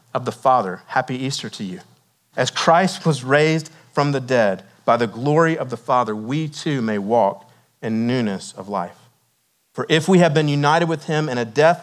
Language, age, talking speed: English, 40-59, 200 wpm